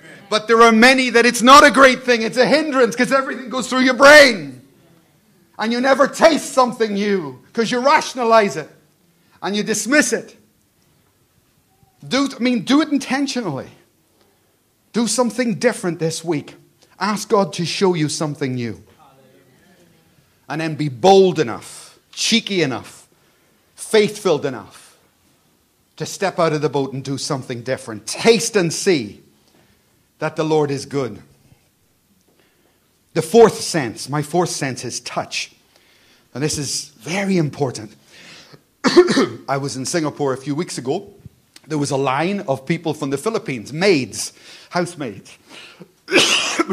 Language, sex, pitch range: English, male, 135-230 Hz